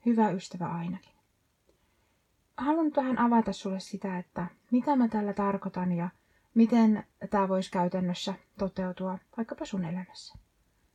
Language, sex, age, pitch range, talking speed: Finnish, female, 20-39, 190-230 Hz, 125 wpm